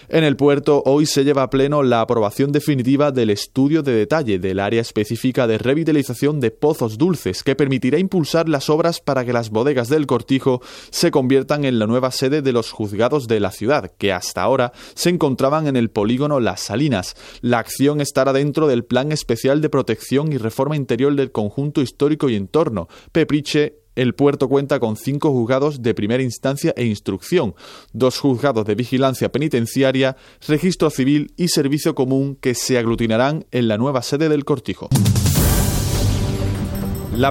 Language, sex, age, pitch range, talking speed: Spanish, male, 30-49, 115-145 Hz, 170 wpm